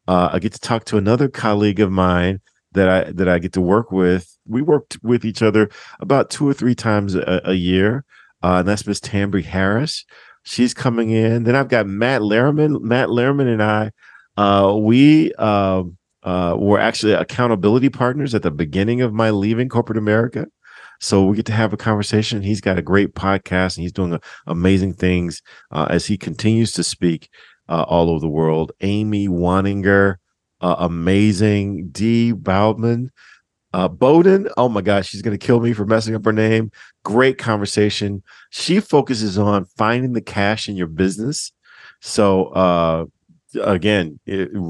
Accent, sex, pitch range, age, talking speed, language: American, male, 95-115 Hz, 40-59, 175 wpm, English